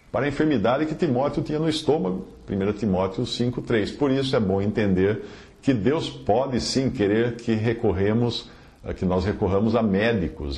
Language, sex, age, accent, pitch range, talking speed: Portuguese, male, 50-69, Brazilian, 95-135 Hz, 160 wpm